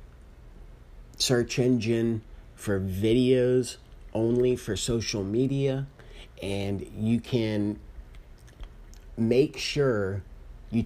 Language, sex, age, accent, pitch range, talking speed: English, male, 30-49, American, 95-125 Hz, 75 wpm